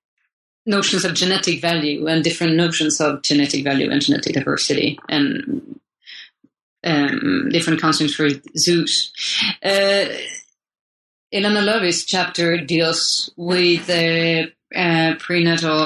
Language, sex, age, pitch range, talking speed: English, female, 30-49, 160-190 Hz, 105 wpm